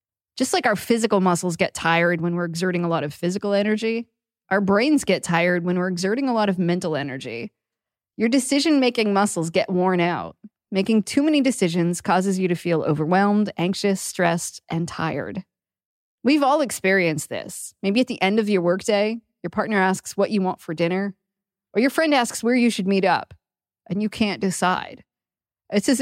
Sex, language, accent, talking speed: female, English, American, 185 wpm